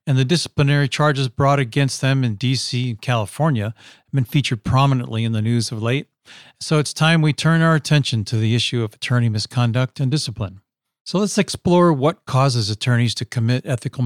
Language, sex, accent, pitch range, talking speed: English, male, American, 115-145 Hz, 190 wpm